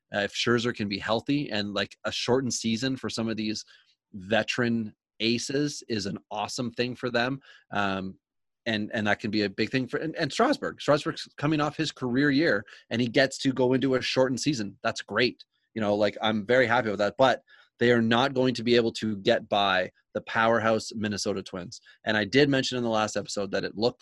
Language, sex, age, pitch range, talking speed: English, male, 30-49, 105-125 Hz, 215 wpm